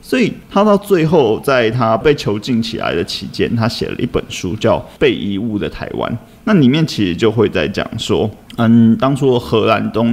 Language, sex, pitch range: Chinese, male, 110-130 Hz